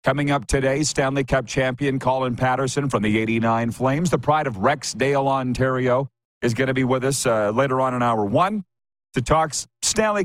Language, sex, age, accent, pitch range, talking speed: English, male, 40-59, American, 120-145 Hz, 185 wpm